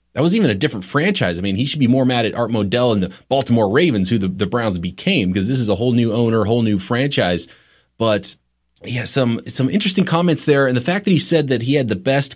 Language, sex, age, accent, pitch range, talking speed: English, male, 20-39, American, 95-125 Hz, 260 wpm